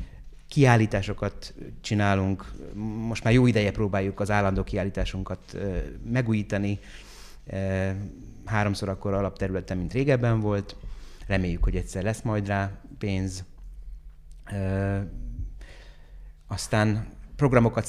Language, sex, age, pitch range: Hungarian, male, 30-49, 95-105 Hz